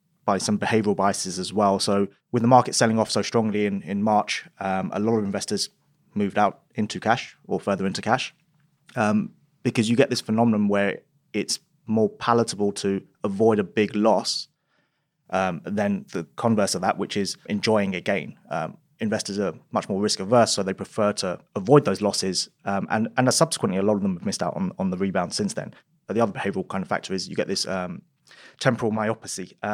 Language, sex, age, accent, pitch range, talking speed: English, male, 20-39, British, 100-120 Hz, 205 wpm